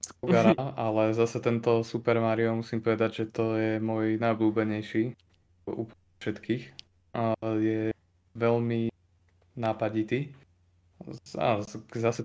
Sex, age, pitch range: male, 20-39, 110-115 Hz